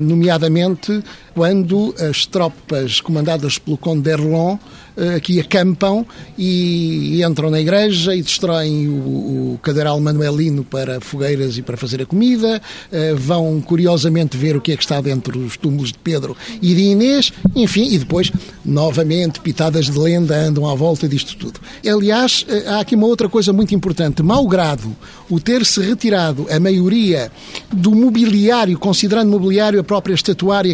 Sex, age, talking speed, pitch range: male, 50-69, 150 wpm, 155-205 Hz